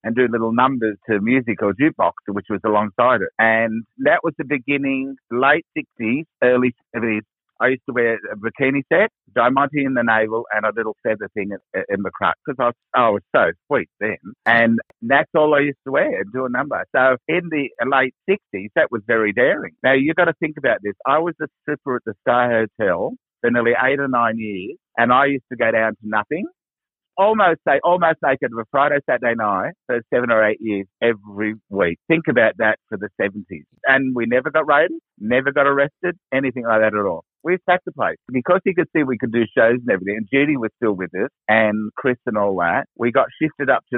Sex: male